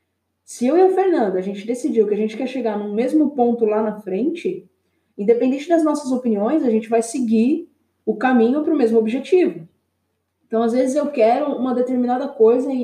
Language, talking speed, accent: Portuguese, 190 wpm, Brazilian